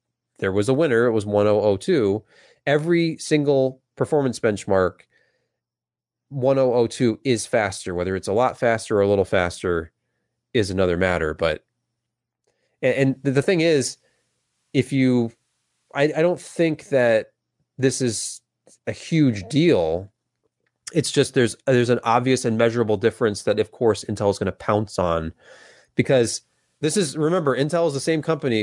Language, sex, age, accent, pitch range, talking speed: English, male, 30-49, American, 105-145 Hz, 145 wpm